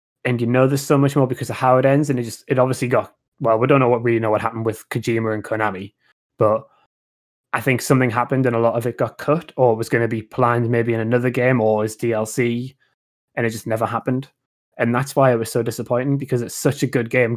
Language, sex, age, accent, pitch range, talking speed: English, male, 20-39, British, 115-130 Hz, 255 wpm